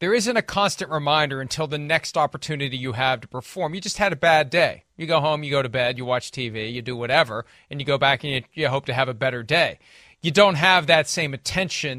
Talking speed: 255 wpm